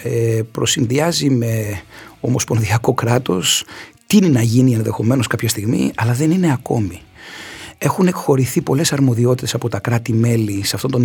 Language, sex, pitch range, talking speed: Greek, male, 115-150 Hz, 135 wpm